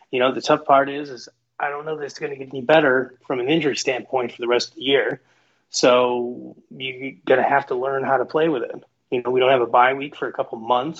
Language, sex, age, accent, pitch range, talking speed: English, male, 30-49, American, 120-140 Hz, 280 wpm